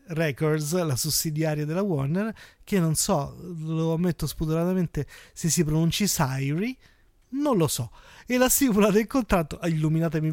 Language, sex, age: Italian, male, 30-49